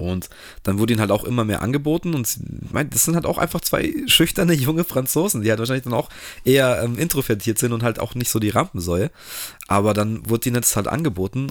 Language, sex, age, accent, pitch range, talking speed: German, male, 30-49, German, 100-125 Hz, 235 wpm